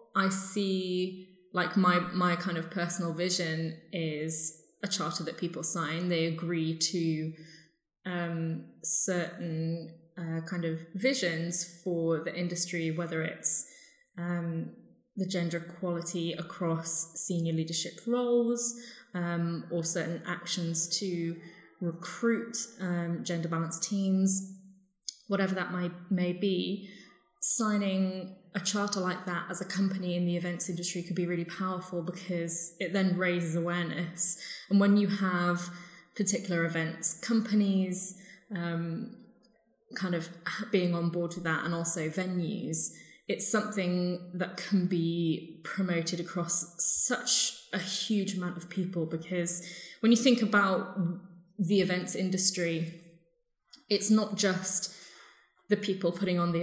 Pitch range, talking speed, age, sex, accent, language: 170-195 Hz, 130 wpm, 20-39, female, British, English